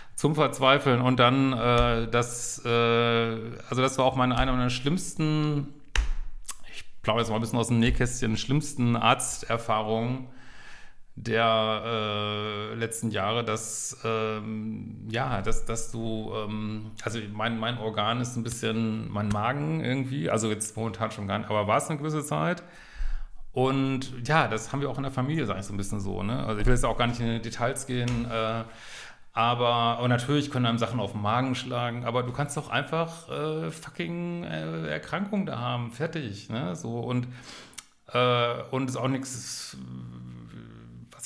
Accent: German